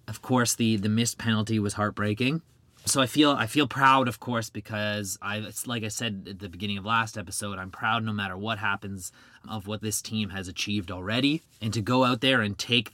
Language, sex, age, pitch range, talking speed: English, male, 30-49, 105-125 Hz, 220 wpm